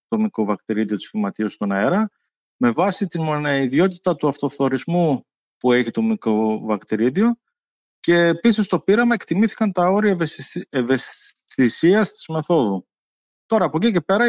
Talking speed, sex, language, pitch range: 130 wpm, male, Greek, 135-195 Hz